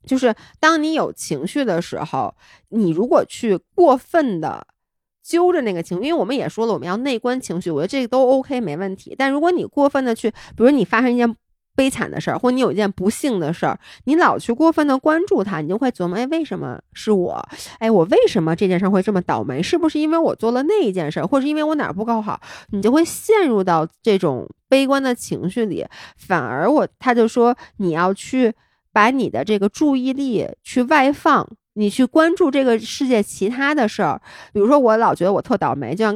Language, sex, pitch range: Chinese, female, 195-275 Hz